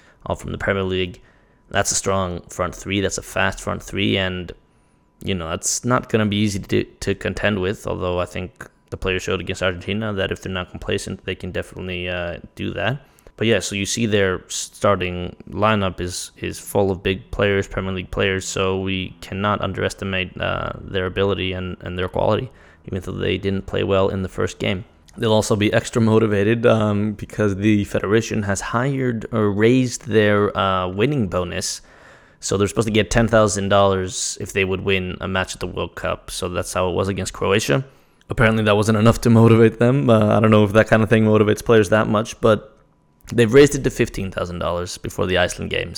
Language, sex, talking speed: English, male, 200 wpm